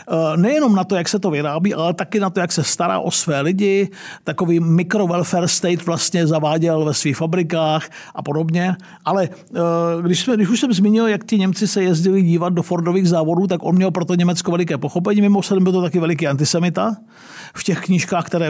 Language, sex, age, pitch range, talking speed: Czech, male, 50-69, 160-195 Hz, 195 wpm